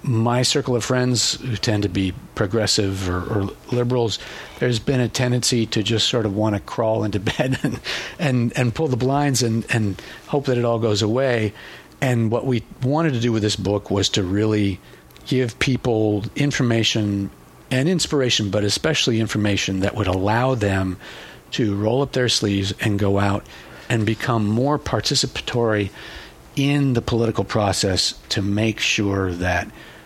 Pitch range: 100-125 Hz